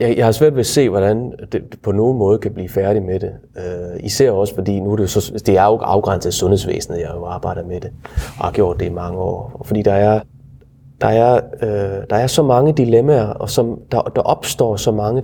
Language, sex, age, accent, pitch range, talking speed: Danish, male, 30-49, native, 105-170 Hz, 240 wpm